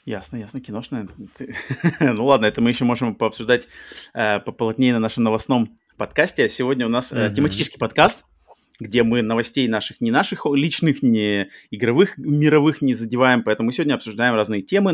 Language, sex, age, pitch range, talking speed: Russian, male, 20-39, 110-140 Hz, 160 wpm